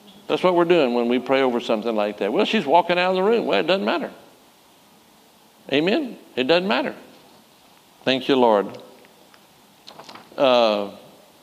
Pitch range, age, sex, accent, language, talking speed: 115-150 Hz, 60-79, male, American, English, 160 wpm